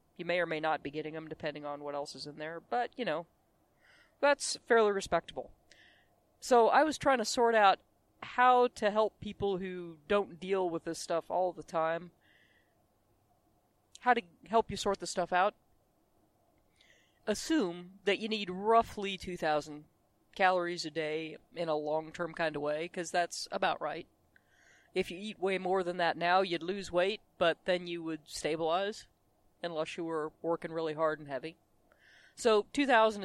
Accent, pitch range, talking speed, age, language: American, 160-200 Hz, 170 wpm, 40-59, English